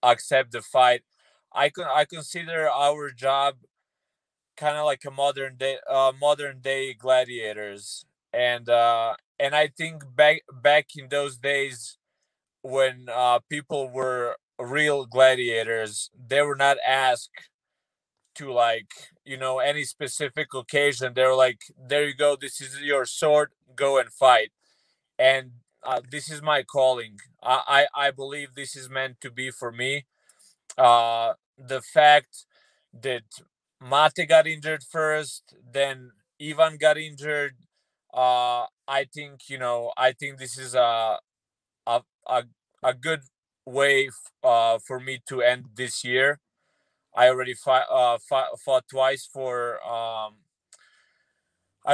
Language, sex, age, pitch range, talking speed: Czech, male, 20-39, 125-145 Hz, 135 wpm